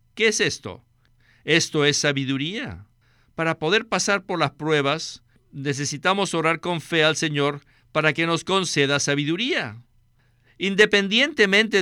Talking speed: 120 wpm